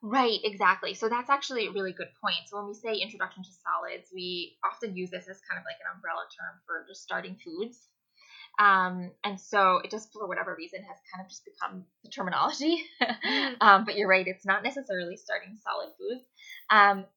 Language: English